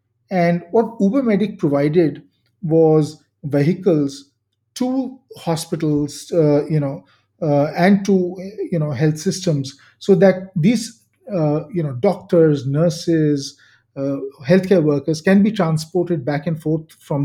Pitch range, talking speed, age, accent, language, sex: 150-195 Hz, 125 wpm, 40-59, Indian, English, male